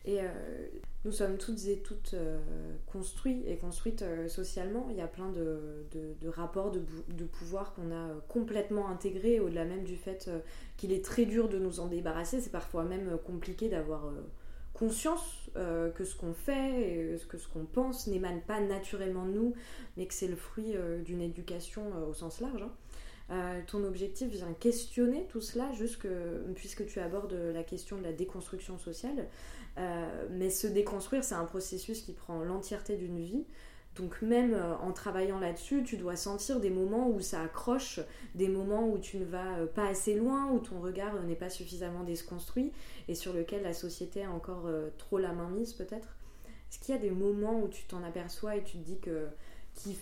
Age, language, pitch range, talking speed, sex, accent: 20-39, French, 175-215 Hz, 195 wpm, female, French